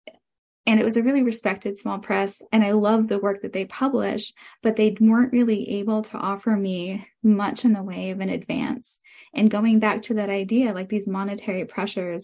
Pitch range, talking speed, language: 200-240 Hz, 200 wpm, English